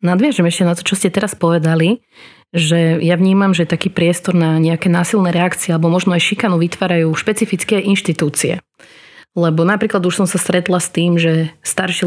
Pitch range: 170-195 Hz